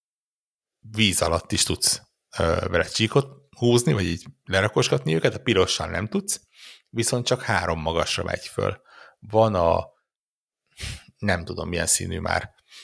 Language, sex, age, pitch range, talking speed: Hungarian, male, 60-79, 95-115 Hz, 135 wpm